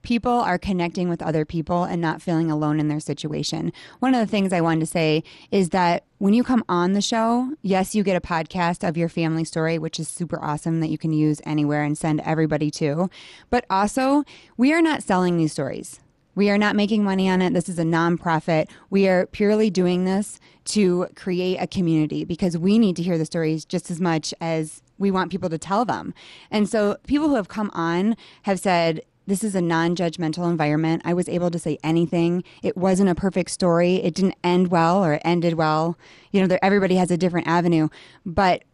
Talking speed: 210 wpm